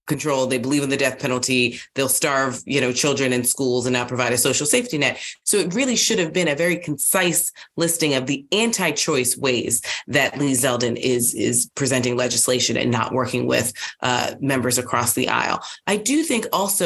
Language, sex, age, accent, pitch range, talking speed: English, female, 30-49, American, 130-170 Hz, 195 wpm